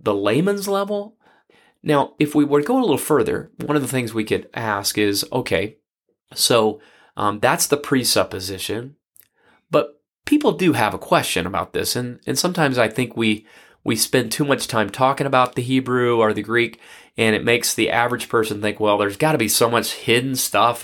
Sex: male